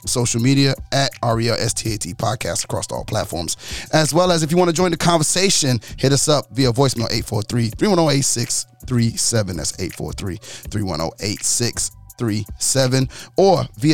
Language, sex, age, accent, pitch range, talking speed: English, male, 30-49, American, 110-130 Hz, 115 wpm